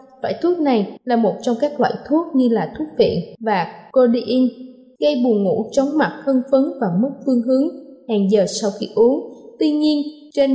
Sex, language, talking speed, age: female, Vietnamese, 195 wpm, 20-39